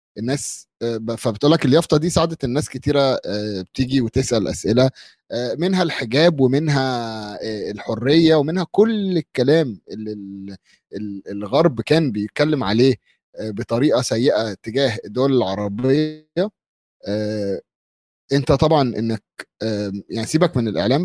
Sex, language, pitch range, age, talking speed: male, Arabic, 110-155 Hz, 30-49, 95 wpm